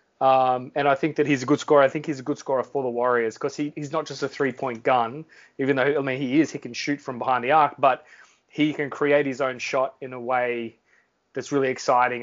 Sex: male